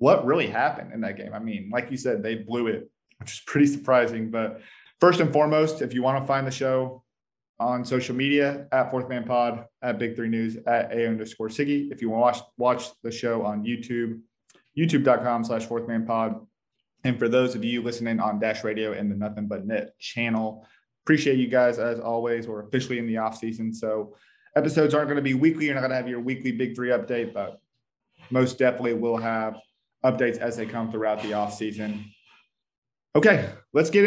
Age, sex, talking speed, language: 20-39, male, 205 wpm, English